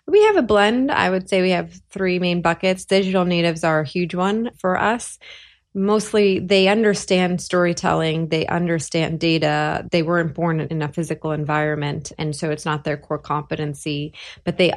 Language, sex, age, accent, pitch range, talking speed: English, female, 20-39, American, 150-180 Hz, 175 wpm